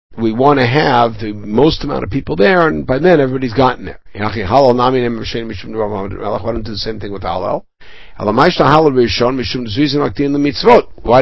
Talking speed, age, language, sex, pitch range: 90 wpm, 60-79, English, male, 105-135 Hz